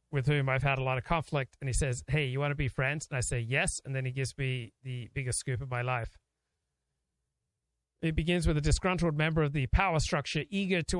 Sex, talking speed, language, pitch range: male, 240 wpm, English, 130-155 Hz